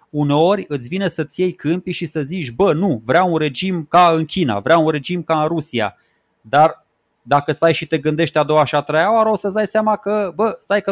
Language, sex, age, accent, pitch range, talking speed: Romanian, male, 20-39, native, 135-185 Hz, 235 wpm